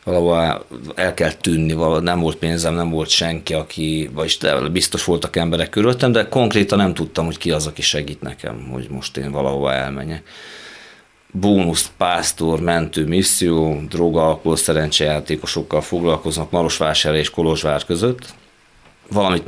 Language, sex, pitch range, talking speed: Hungarian, male, 80-95 Hz, 135 wpm